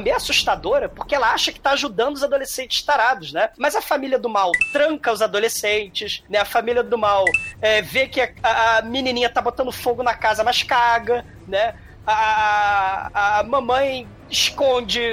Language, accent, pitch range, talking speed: Portuguese, Brazilian, 195-275 Hz, 165 wpm